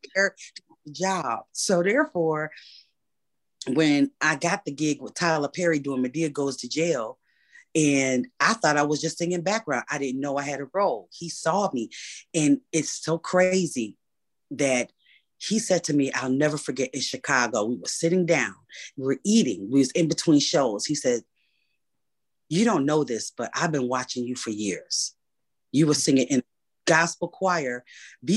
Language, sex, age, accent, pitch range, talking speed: English, female, 30-49, American, 130-170 Hz, 170 wpm